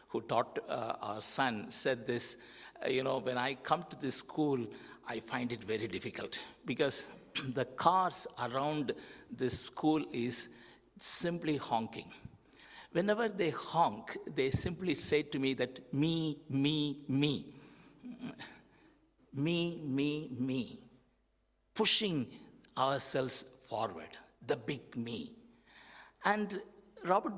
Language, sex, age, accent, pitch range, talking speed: English, male, 60-79, Indian, 130-195 Hz, 115 wpm